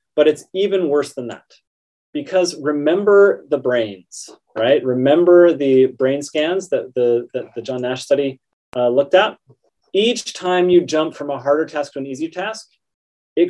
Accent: American